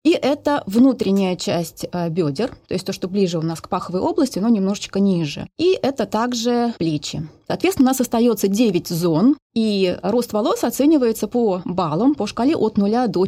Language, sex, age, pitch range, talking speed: Russian, female, 30-49, 185-260 Hz, 175 wpm